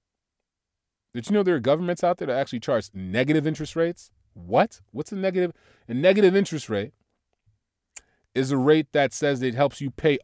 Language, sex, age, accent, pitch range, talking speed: English, male, 30-49, American, 105-140 Hz, 180 wpm